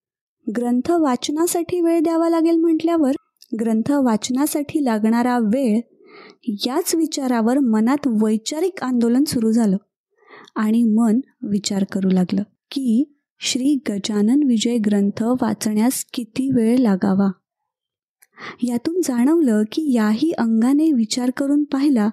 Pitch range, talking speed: 225-315 Hz, 105 wpm